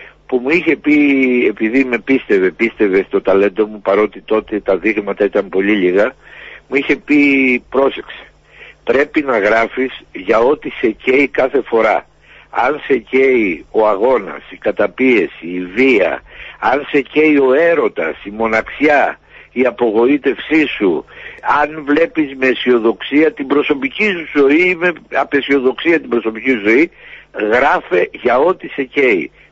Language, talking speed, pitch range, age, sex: Greek, 140 wpm, 120-180 Hz, 60-79, male